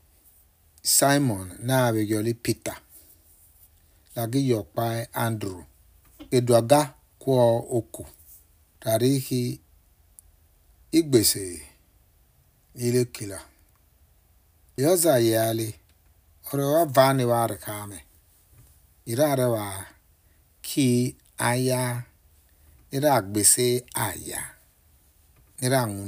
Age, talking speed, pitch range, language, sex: 60-79, 60 wpm, 85-125 Hz, English, male